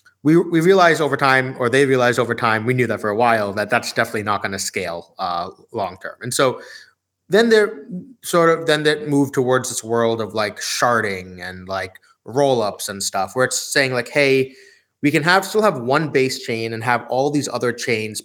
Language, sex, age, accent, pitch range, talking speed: English, male, 30-49, American, 105-135 Hz, 215 wpm